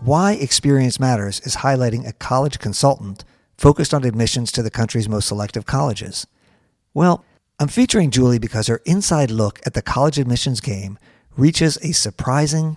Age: 50-69